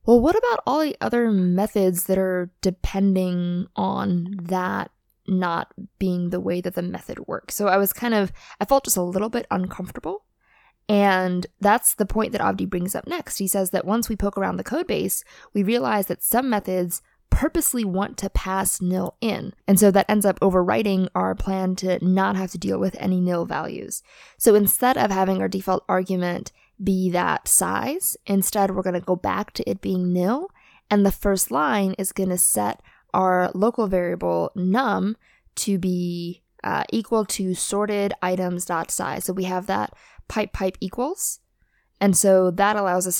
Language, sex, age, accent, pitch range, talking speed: English, female, 20-39, American, 180-205 Hz, 180 wpm